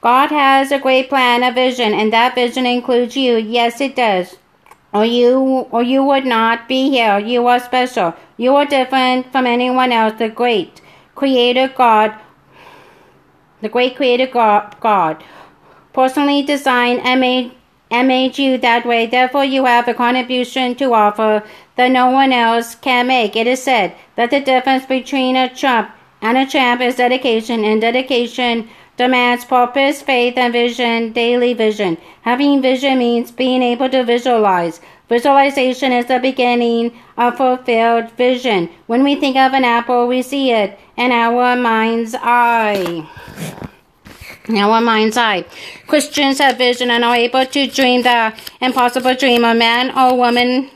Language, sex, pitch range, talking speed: English, female, 235-260 Hz, 155 wpm